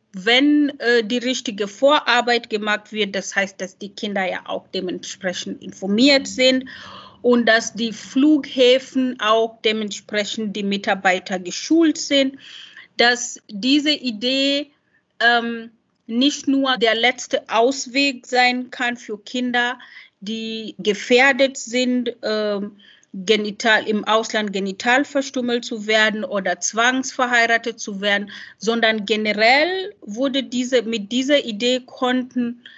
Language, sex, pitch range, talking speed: German, female, 210-255 Hz, 115 wpm